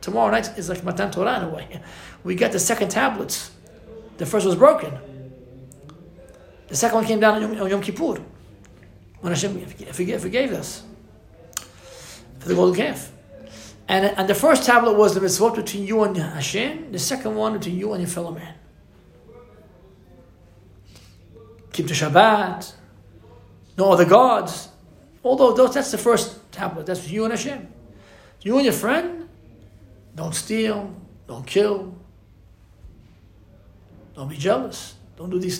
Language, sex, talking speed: English, male, 145 wpm